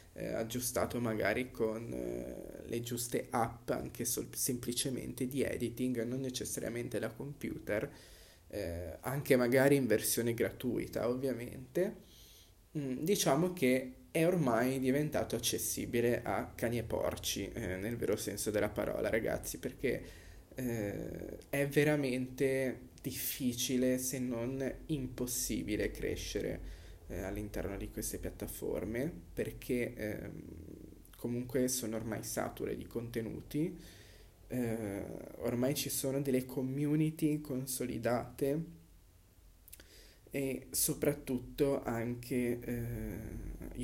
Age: 20-39